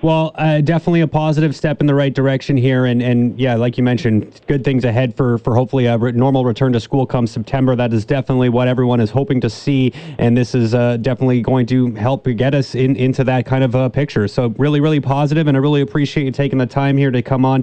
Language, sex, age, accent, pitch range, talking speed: English, male, 30-49, American, 130-150 Hz, 245 wpm